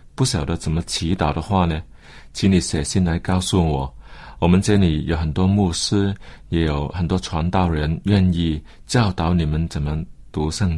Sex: male